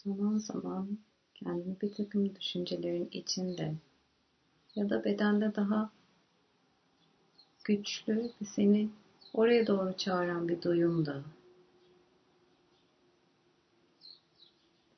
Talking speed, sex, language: 80 wpm, female, Turkish